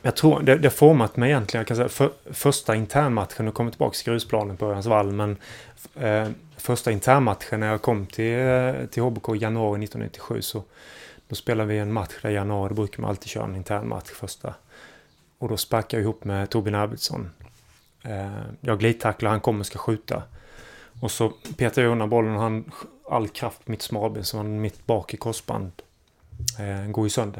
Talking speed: 190 wpm